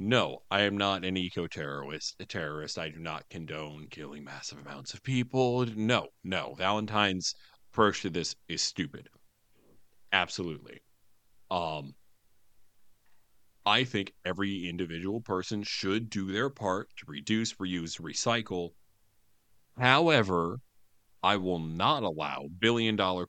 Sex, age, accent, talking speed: male, 40-59, American, 120 wpm